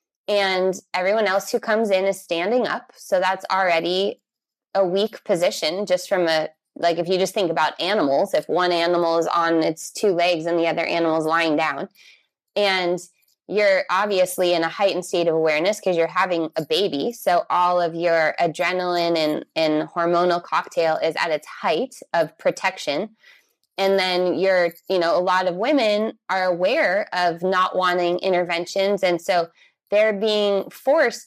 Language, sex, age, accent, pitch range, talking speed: English, female, 20-39, American, 175-205 Hz, 170 wpm